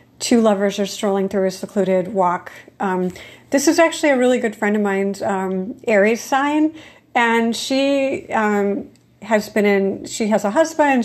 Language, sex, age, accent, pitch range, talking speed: English, female, 40-59, American, 200-235 Hz, 170 wpm